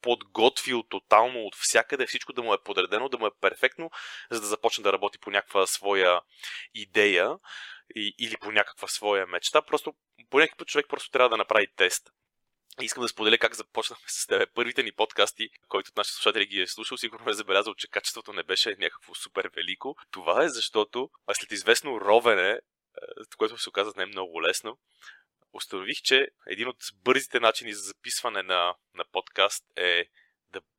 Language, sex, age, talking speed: Bulgarian, male, 30-49, 180 wpm